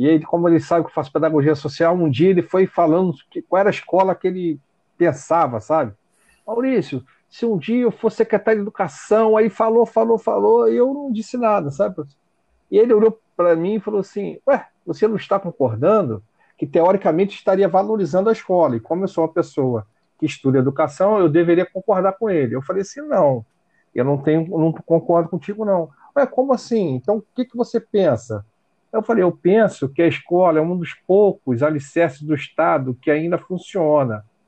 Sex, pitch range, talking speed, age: male, 160-225 Hz, 195 wpm, 40-59